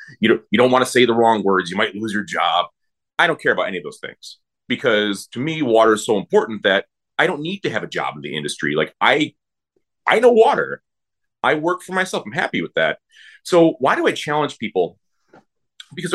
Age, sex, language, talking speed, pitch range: 30-49, male, English, 225 wpm, 110-170 Hz